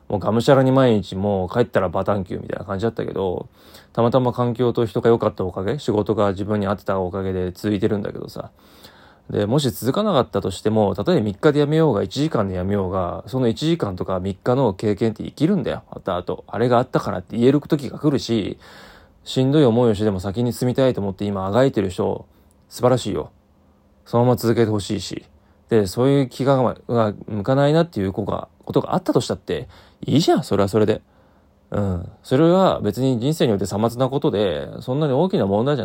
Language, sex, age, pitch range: Japanese, male, 20-39, 100-125 Hz